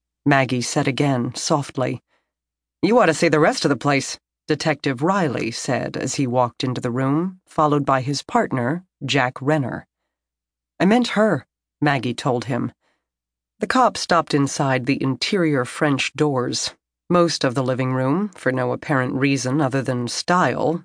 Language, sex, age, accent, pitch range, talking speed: English, female, 40-59, American, 130-155 Hz, 155 wpm